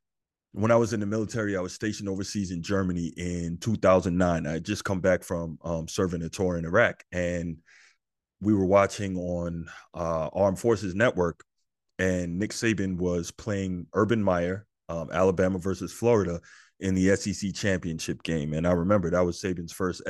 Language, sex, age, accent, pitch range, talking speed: English, male, 30-49, American, 85-105 Hz, 175 wpm